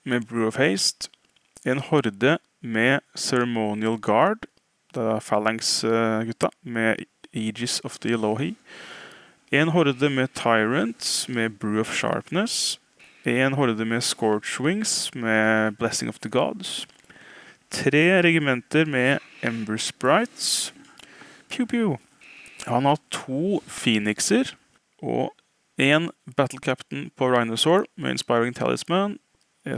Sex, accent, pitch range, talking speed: male, Norwegian, 110-140 Hz, 105 wpm